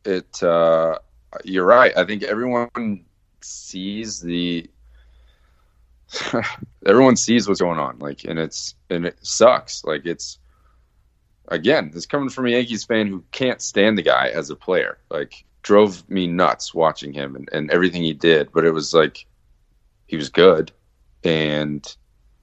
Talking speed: 150 wpm